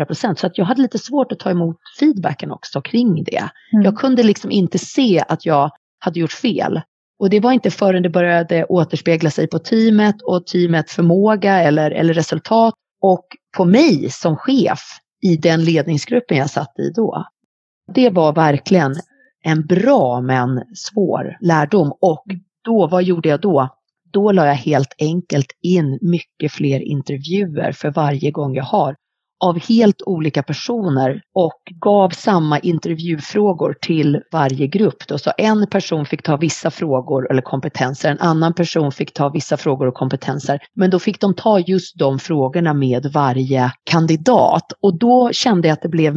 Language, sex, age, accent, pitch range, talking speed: Swedish, female, 30-49, native, 150-195 Hz, 165 wpm